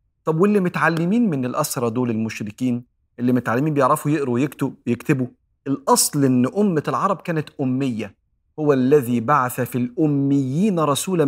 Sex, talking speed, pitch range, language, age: male, 130 wpm, 115-150 Hz, Arabic, 40-59